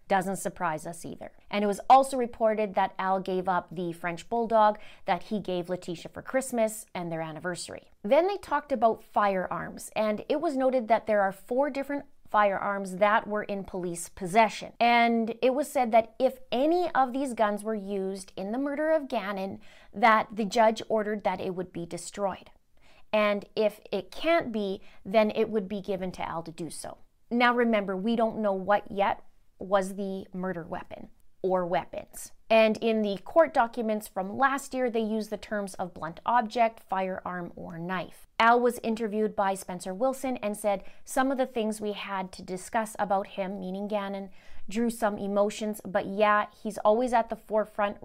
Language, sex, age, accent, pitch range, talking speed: English, female, 30-49, American, 195-230 Hz, 185 wpm